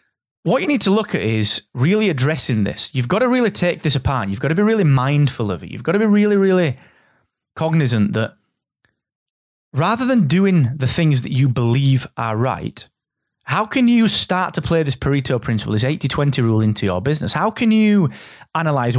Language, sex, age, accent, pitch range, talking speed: English, male, 30-49, British, 120-165 Hz, 195 wpm